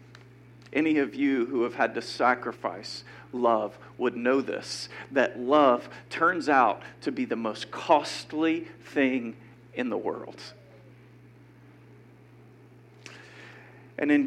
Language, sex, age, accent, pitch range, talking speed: English, male, 50-69, American, 115-150 Hz, 115 wpm